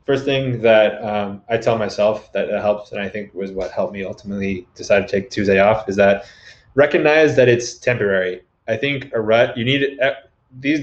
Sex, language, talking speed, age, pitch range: male, English, 195 wpm, 20-39, 100-115 Hz